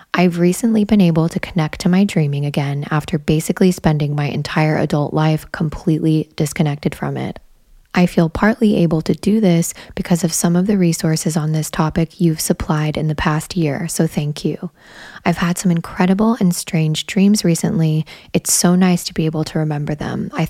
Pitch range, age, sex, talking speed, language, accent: 160-185 Hz, 10-29, female, 185 wpm, English, American